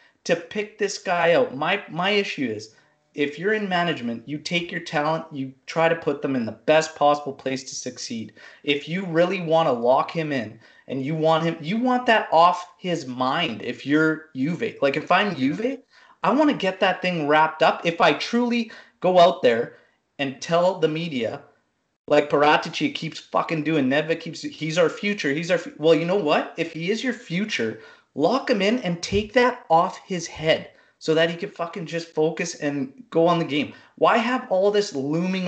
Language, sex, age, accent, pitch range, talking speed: English, male, 30-49, American, 150-200 Hz, 200 wpm